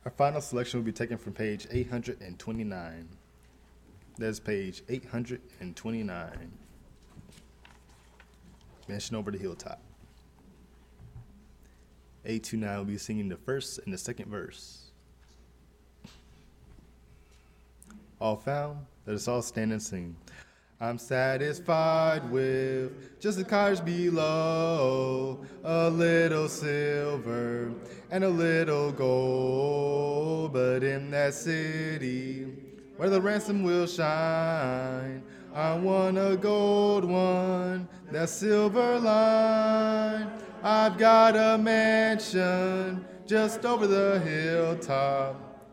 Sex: male